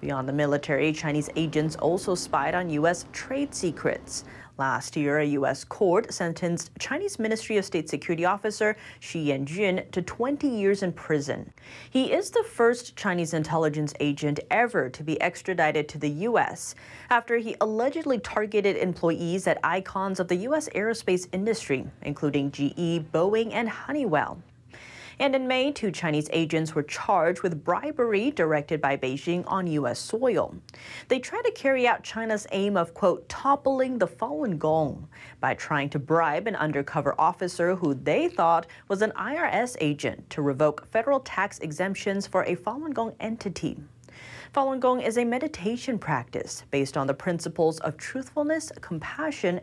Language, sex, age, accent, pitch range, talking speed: English, female, 30-49, American, 155-230 Hz, 155 wpm